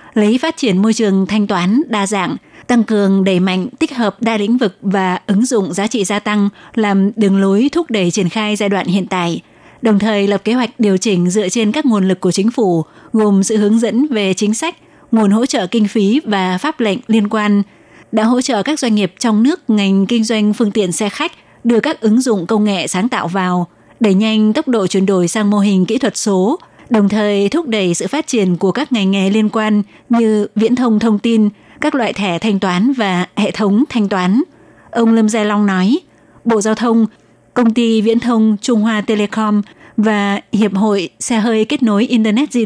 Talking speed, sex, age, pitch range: 220 wpm, female, 20-39, 195-230 Hz